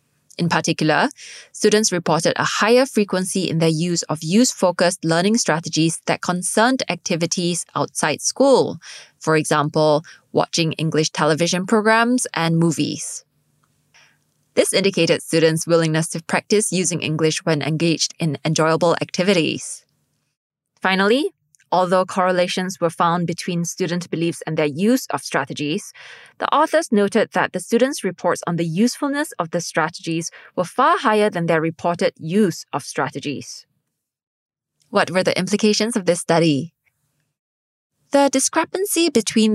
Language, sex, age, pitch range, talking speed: English, female, 20-39, 160-205 Hz, 130 wpm